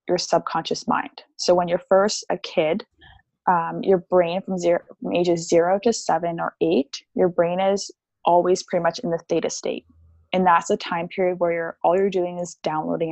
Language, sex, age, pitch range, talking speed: English, female, 20-39, 170-190 Hz, 195 wpm